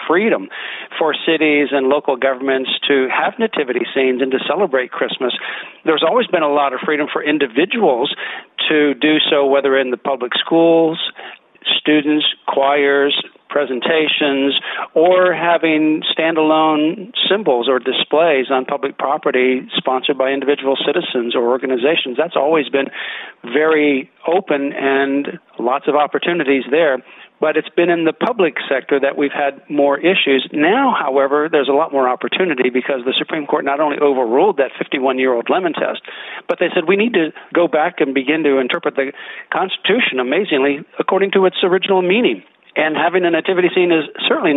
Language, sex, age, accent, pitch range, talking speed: English, male, 50-69, American, 135-160 Hz, 155 wpm